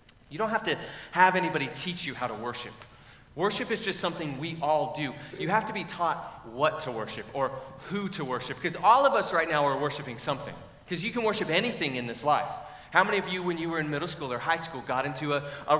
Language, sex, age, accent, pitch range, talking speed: English, male, 30-49, American, 140-175 Hz, 245 wpm